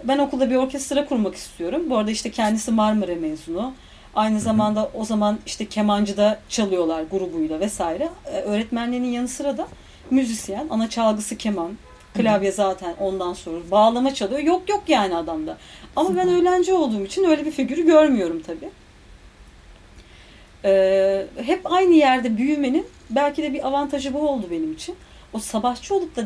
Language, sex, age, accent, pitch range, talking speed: Turkish, female, 40-59, native, 195-300 Hz, 150 wpm